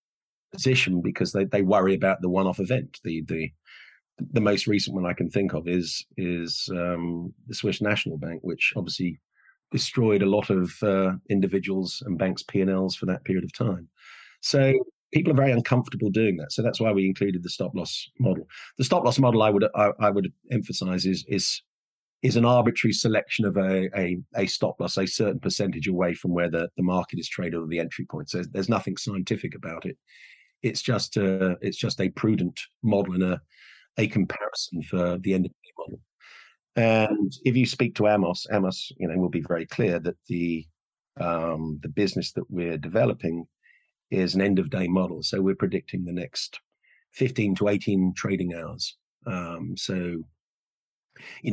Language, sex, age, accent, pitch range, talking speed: English, male, 40-59, British, 90-105 Hz, 180 wpm